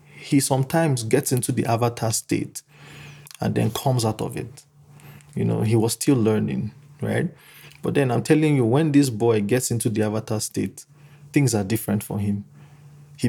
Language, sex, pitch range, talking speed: English, male, 115-145 Hz, 175 wpm